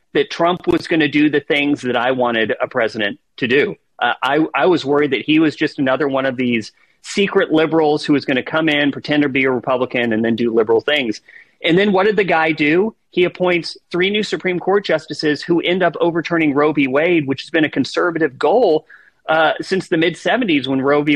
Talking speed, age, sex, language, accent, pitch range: 225 wpm, 40-59, male, English, American, 145-180 Hz